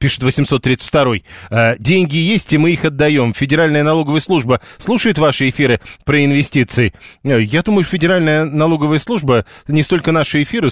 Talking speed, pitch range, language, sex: 140 wpm, 125-165 Hz, Russian, male